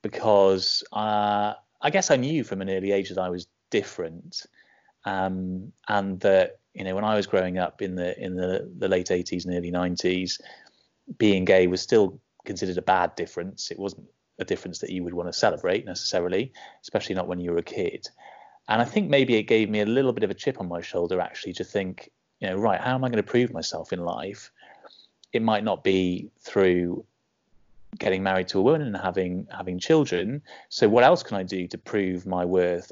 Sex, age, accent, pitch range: male, 30-49, British, 90-105 Hz